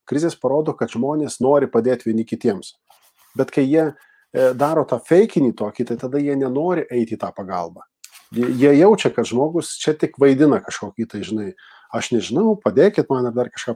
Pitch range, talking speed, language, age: 120-150 Hz, 165 wpm, English, 40-59